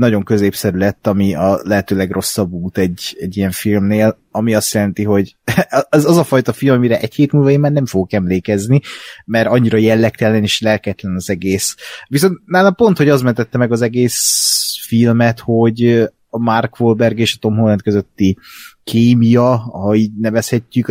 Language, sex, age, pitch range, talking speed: Hungarian, male, 30-49, 100-125 Hz, 170 wpm